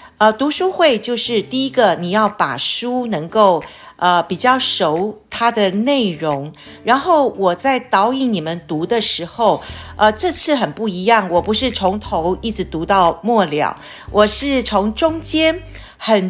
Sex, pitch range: female, 185-255 Hz